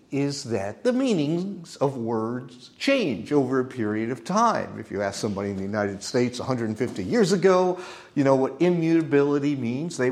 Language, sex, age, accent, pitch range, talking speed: English, male, 50-69, American, 110-150 Hz, 170 wpm